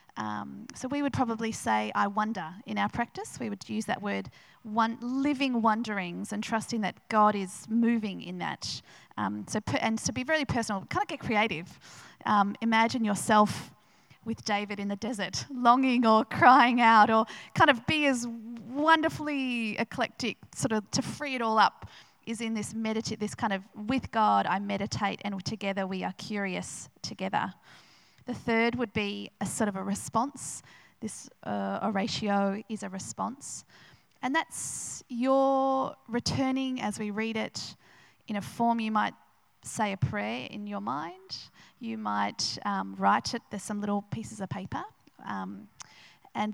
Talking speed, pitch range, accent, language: 170 wpm, 200-240 Hz, Australian, English